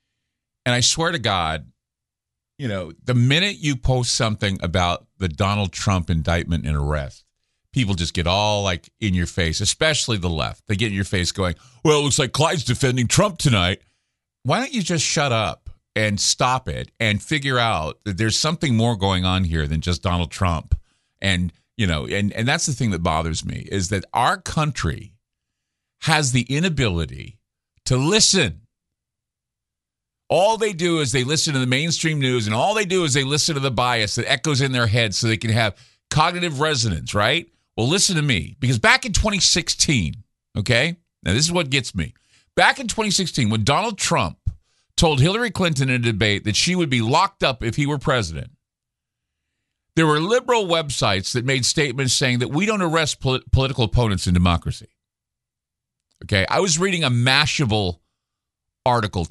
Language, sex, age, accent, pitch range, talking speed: English, male, 50-69, American, 95-150 Hz, 180 wpm